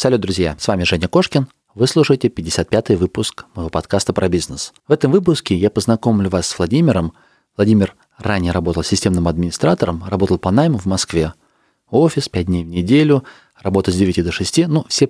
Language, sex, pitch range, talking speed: Russian, male, 90-120 Hz, 175 wpm